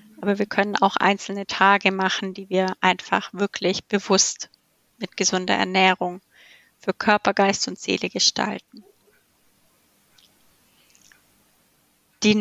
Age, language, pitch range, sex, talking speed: 30-49, German, 185-205 Hz, female, 105 wpm